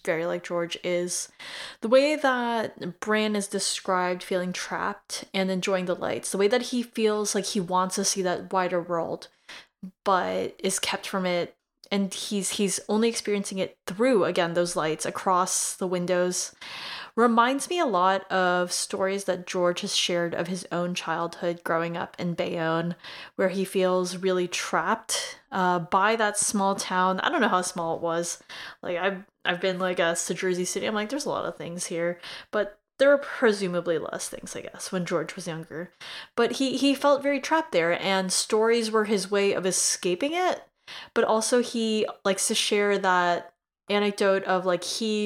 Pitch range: 175-210 Hz